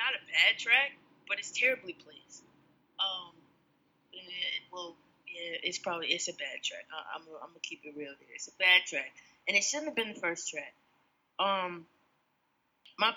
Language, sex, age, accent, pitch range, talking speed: English, female, 20-39, American, 200-280 Hz, 185 wpm